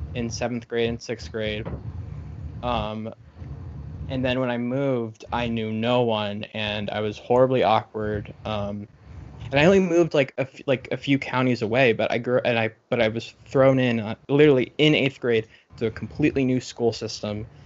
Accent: American